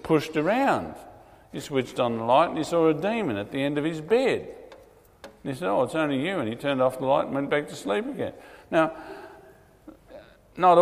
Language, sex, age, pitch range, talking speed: English, male, 50-69, 115-160 Hz, 215 wpm